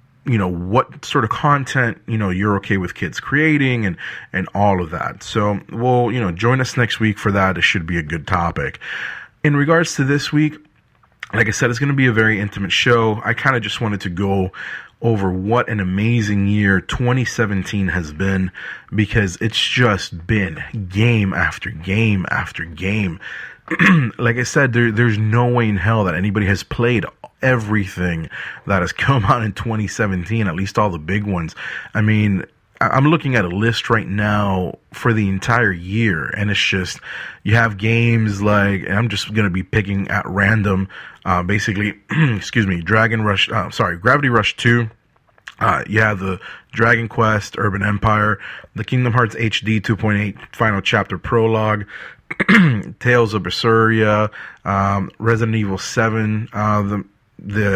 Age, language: 30-49, English